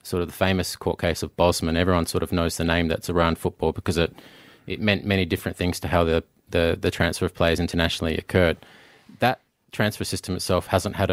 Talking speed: 215 wpm